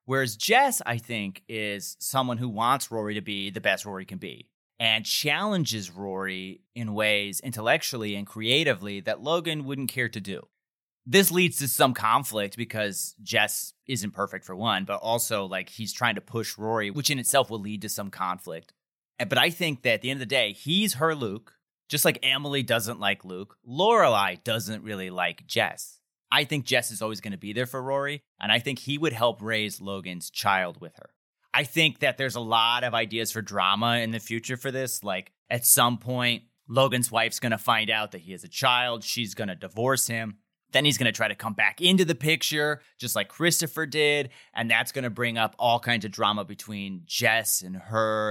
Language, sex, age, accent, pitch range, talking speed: English, male, 30-49, American, 105-135 Hz, 205 wpm